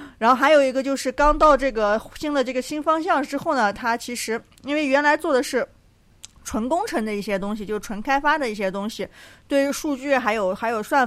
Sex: female